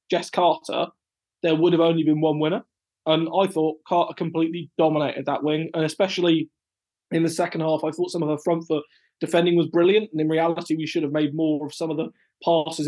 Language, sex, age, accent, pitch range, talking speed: English, male, 20-39, British, 150-170 Hz, 215 wpm